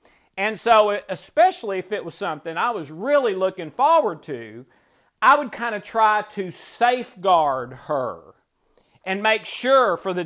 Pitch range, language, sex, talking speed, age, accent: 180-240 Hz, English, male, 150 wpm, 50-69, American